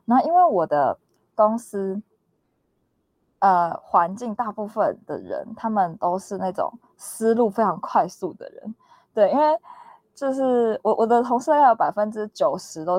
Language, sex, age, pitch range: Chinese, female, 20-39, 185-255 Hz